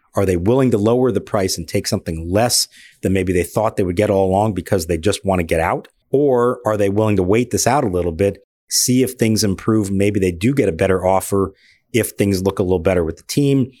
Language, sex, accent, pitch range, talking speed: English, male, American, 95-115 Hz, 250 wpm